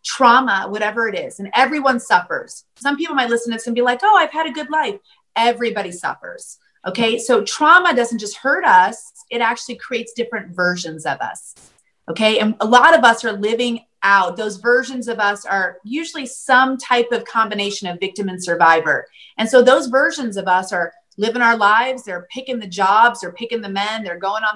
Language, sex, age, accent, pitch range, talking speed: English, female, 30-49, American, 200-250 Hz, 200 wpm